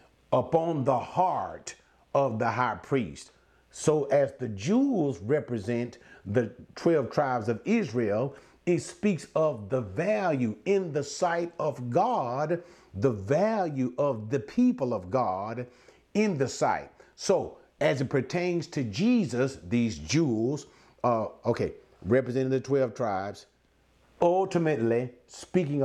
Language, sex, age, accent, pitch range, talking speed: English, male, 50-69, American, 120-170 Hz, 125 wpm